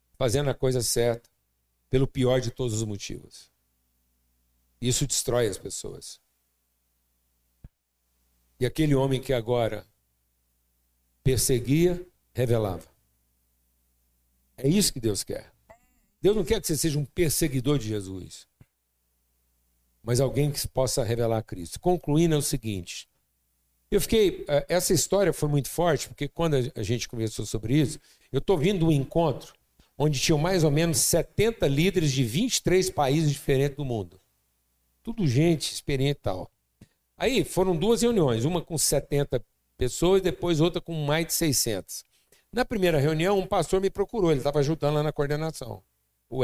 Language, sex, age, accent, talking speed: Portuguese, male, 60-79, Brazilian, 140 wpm